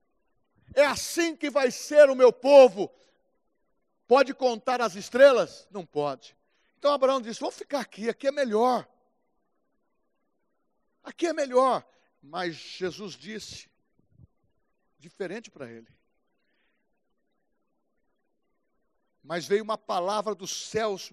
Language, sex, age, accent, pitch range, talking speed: Portuguese, male, 60-79, Brazilian, 225-290 Hz, 110 wpm